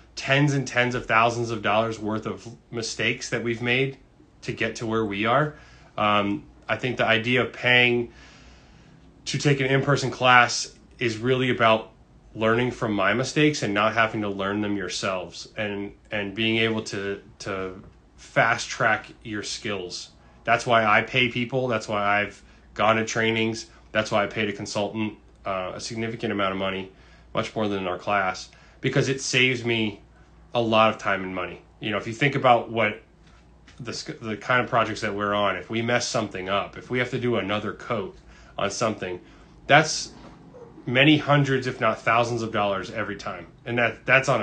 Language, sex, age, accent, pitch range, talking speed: English, male, 20-39, American, 105-120 Hz, 185 wpm